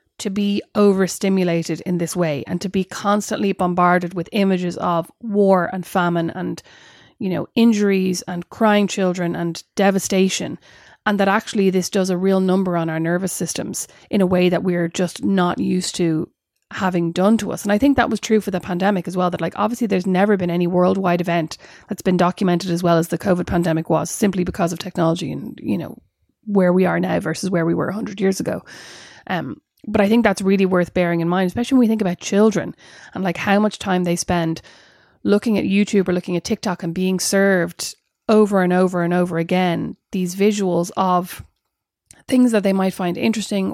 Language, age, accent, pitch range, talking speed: English, 30-49, Irish, 175-205 Hz, 205 wpm